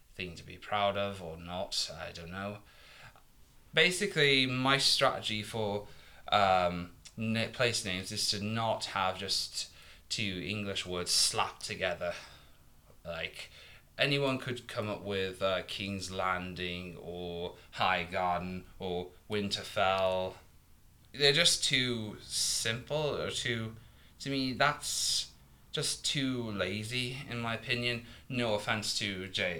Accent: British